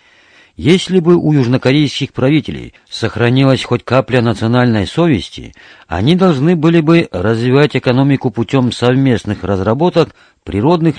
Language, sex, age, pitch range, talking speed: Russian, male, 50-69, 100-145 Hz, 110 wpm